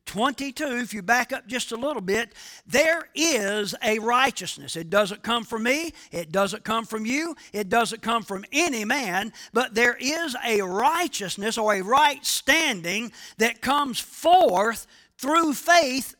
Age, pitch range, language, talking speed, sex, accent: 50-69, 185-250 Hz, English, 160 wpm, male, American